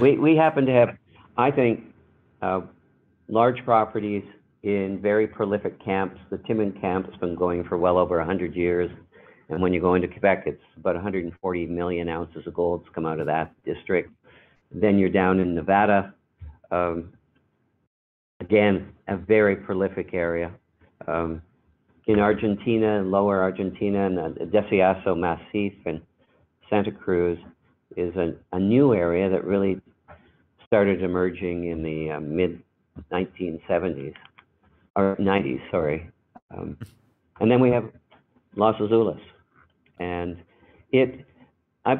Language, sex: English, male